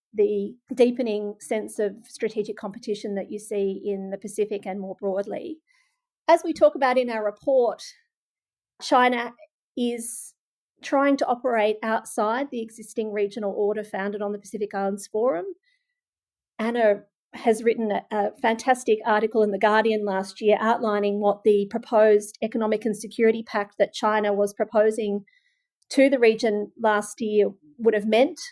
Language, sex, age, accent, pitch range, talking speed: English, female, 40-59, Australian, 205-245 Hz, 145 wpm